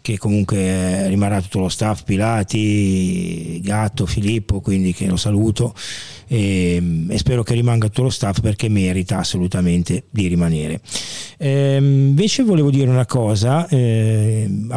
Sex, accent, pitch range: male, native, 110-135 Hz